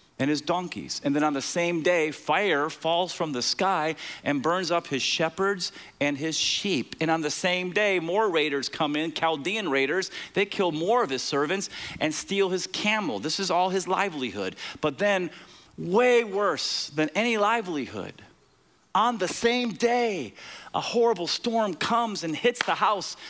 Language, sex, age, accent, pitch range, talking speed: English, male, 40-59, American, 165-245 Hz, 175 wpm